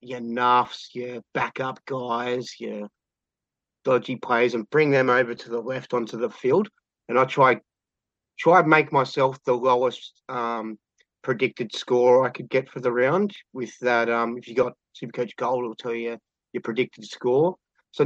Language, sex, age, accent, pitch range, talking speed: English, male, 30-49, Australian, 115-135 Hz, 175 wpm